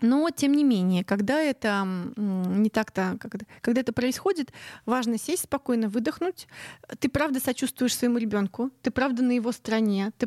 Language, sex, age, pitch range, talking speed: Russian, female, 30-49, 210-260 Hz, 150 wpm